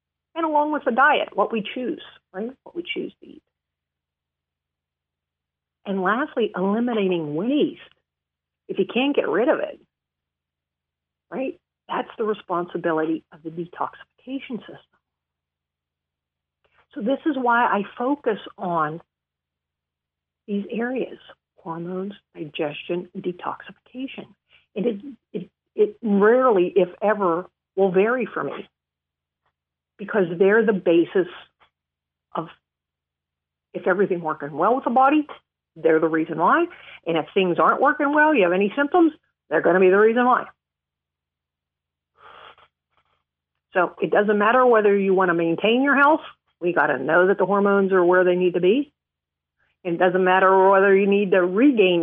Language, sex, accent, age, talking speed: English, female, American, 50-69, 140 wpm